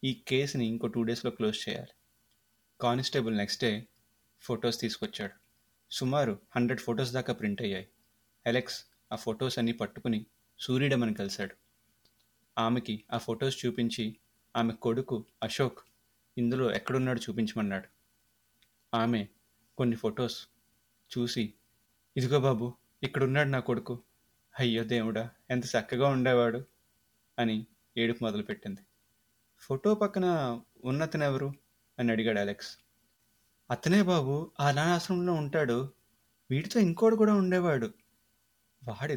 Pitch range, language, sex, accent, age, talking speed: 115-135 Hz, Telugu, male, native, 30-49, 105 wpm